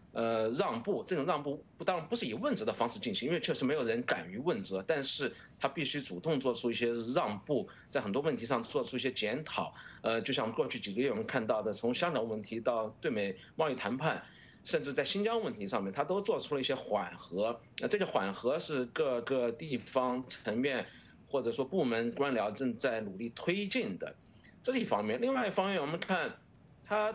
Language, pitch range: English, 125-180 Hz